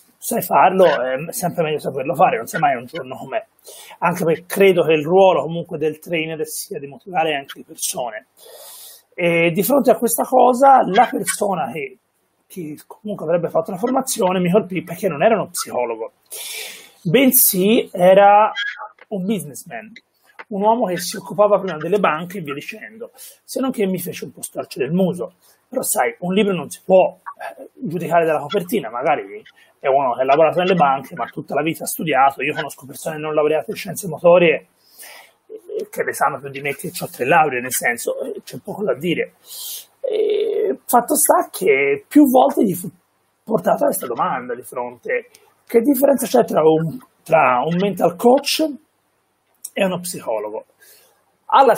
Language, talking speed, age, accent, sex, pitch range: Italian, 170 wpm, 30-49, native, male, 170-280 Hz